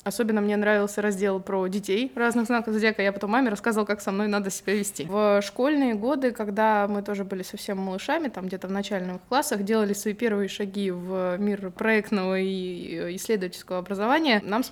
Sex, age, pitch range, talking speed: female, 20-39, 185-230 Hz, 185 wpm